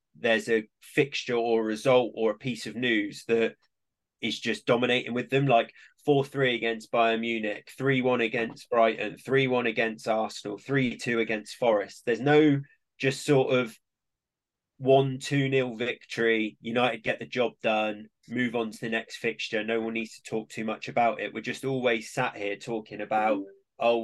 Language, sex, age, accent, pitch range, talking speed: English, male, 20-39, British, 110-125 Hz, 180 wpm